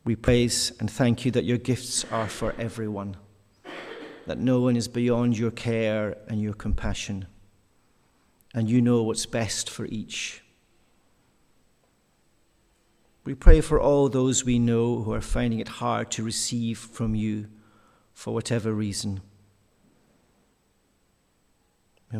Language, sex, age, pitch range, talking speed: English, male, 50-69, 110-120 Hz, 130 wpm